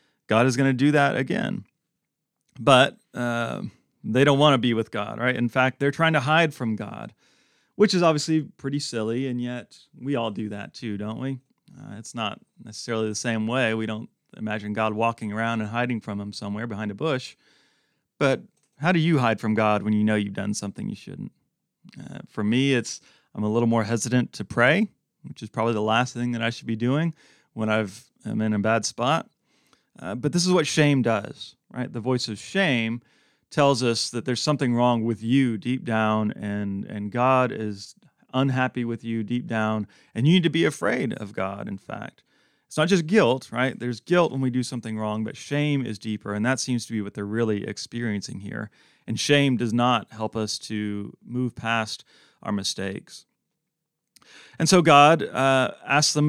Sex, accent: male, American